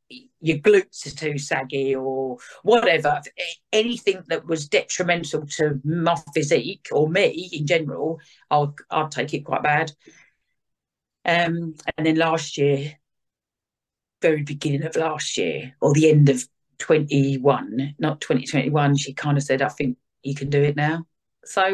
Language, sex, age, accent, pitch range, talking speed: English, female, 40-59, British, 145-185 Hz, 155 wpm